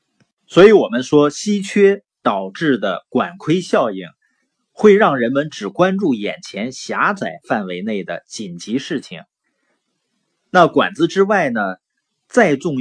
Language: Chinese